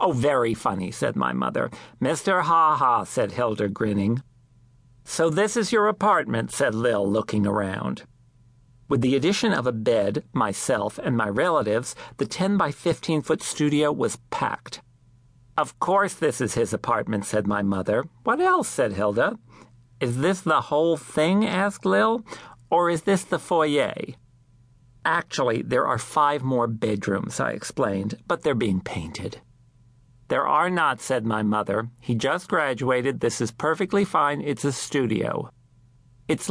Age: 50-69